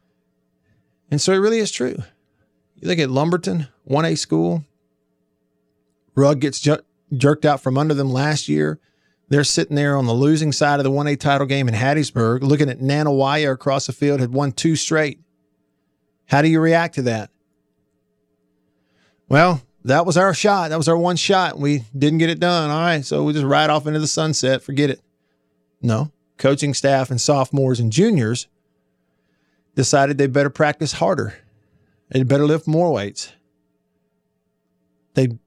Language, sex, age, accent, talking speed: English, male, 40-59, American, 165 wpm